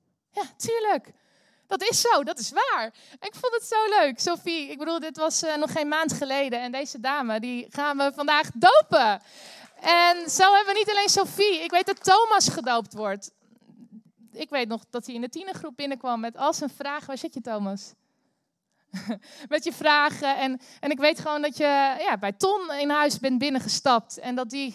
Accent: Dutch